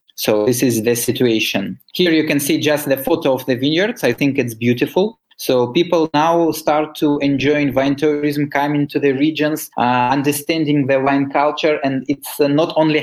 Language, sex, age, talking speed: English, male, 20-39, 190 wpm